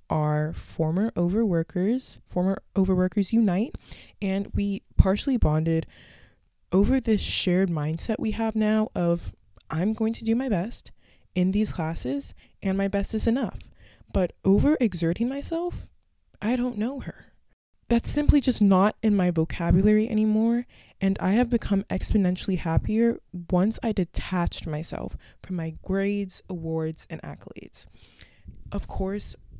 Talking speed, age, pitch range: 130 wpm, 20-39, 170-220 Hz